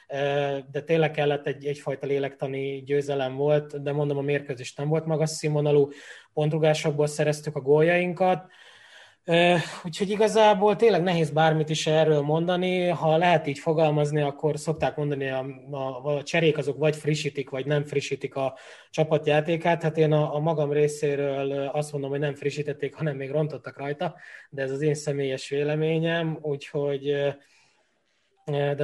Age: 20-39